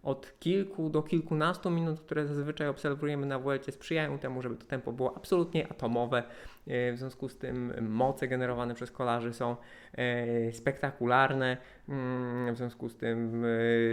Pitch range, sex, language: 120-155 Hz, male, Polish